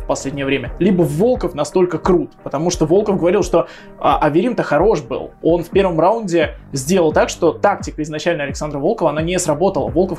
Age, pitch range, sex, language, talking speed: 20-39, 145-175 Hz, male, Russian, 170 wpm